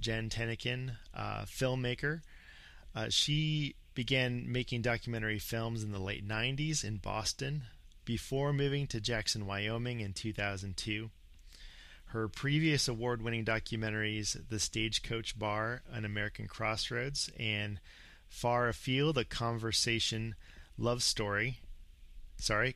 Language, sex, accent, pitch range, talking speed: English, male, American, 105-125 Hz, 110 wpm